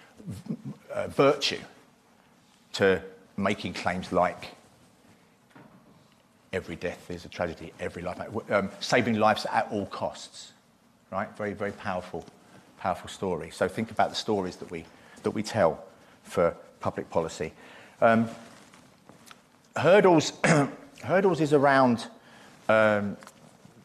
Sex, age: male, 40-59